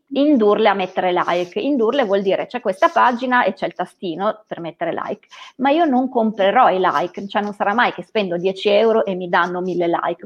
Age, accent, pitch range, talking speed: 30-49, native, 185-245 Hz, 210 wpm